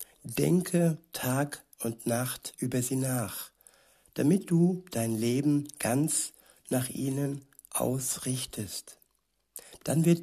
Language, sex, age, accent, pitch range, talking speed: German, male, 60-79, German, 125-145 Hz, 100 wpm